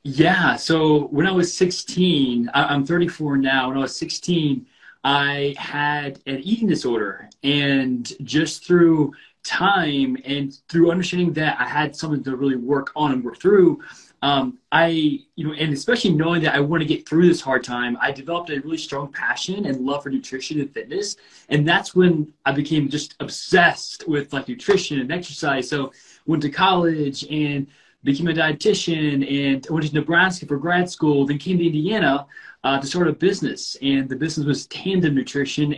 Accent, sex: American, male